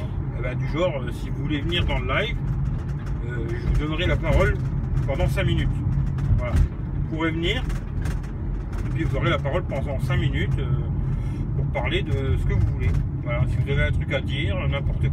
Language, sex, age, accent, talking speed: French, male, 40-59, French, 200 wpm